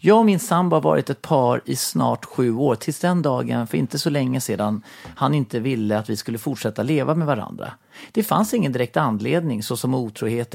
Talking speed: 215 wpm